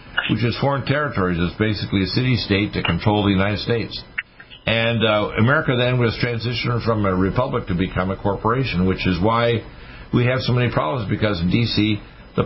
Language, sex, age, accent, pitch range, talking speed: English, male, 60-79, American, 100-125 Hz, 190 wpm